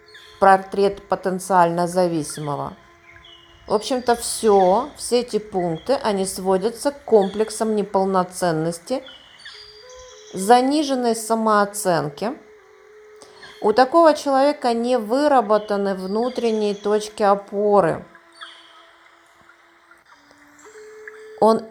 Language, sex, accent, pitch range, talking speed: Russian, female, native, 195-265 Hz, 70 wpm